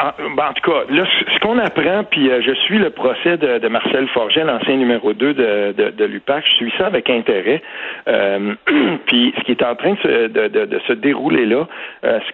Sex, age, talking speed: male, 60-79, 225 wpm